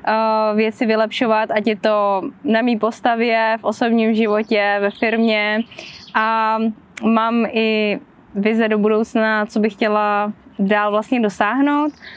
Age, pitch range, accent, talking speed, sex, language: 20-39, 205-225 Hz, native, 125 wpm, female, Czech